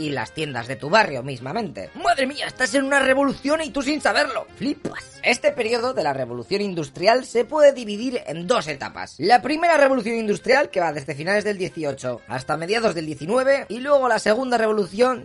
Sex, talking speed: female, 195 wpm